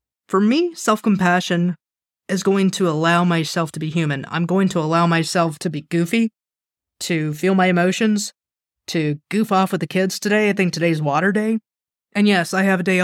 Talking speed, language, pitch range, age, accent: 190 wpm, English, 170-210 Hz, 20-39, American